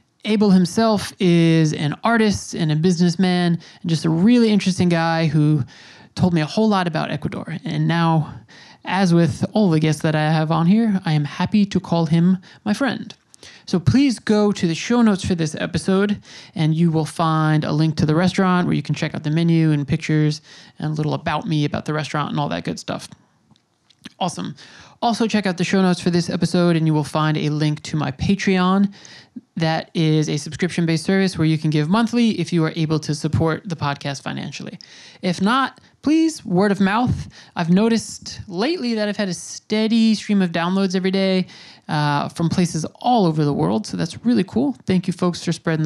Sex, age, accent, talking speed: male, 20-39, American, 205 wpm